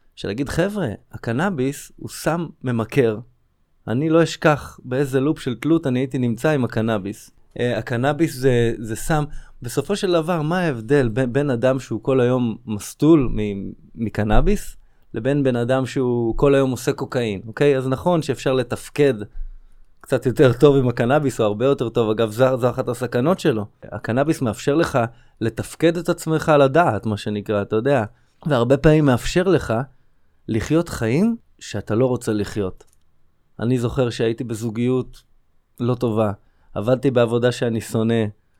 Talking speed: 150 wpm